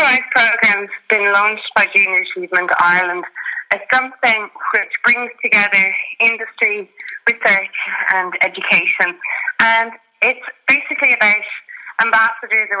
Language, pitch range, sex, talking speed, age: English, 185-230 Hz, female, 110 wpm, 20-39